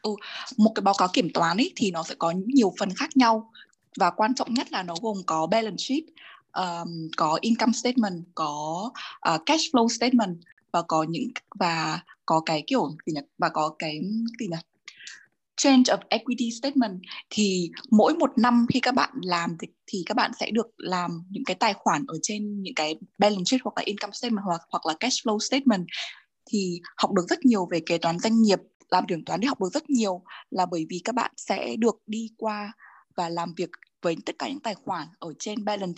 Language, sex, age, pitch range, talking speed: Vietnamese, female, 20-39, 180-235 Hz, 210 wpm